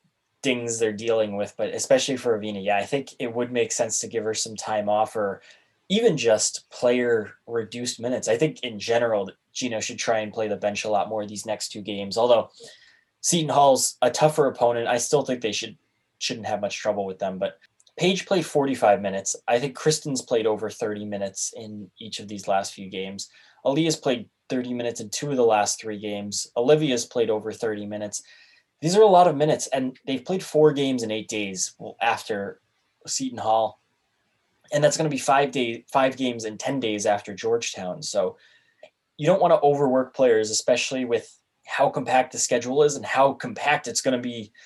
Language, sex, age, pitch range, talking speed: English, male, 10-29, 105-140 Hz, 200 wpm